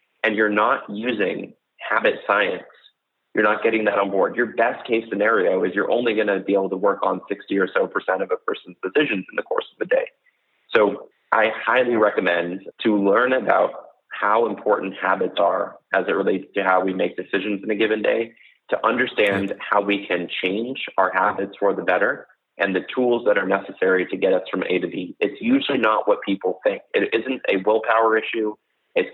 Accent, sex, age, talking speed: American, male, 30-49, 205 wpm